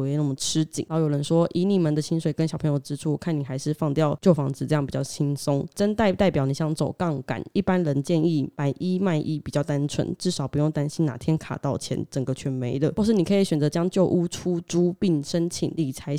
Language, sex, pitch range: Chinese, female, 150-185 Hz